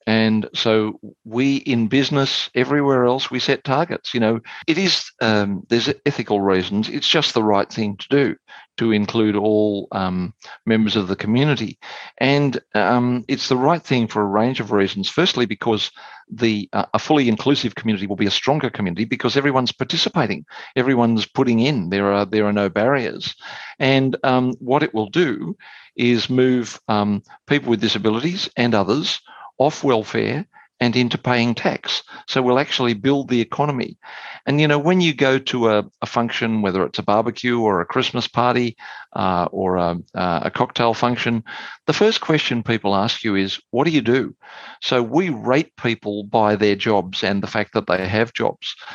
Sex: male